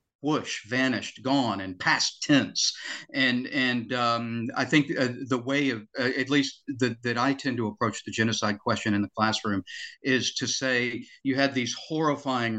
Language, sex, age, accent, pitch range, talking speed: English, male, 50-69, American, 110-135 Hz, 175 wpm